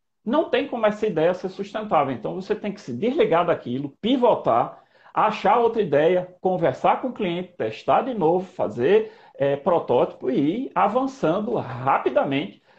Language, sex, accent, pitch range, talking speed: Portuguese, male, Brazilian, 165-245 Hz, 145 wpm